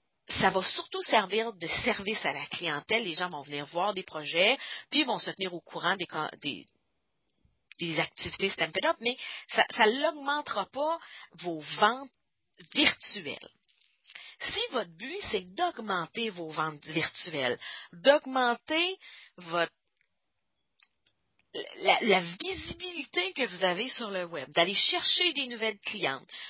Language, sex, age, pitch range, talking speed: English, female, 40-59, 190-280 Hz, 135 wpm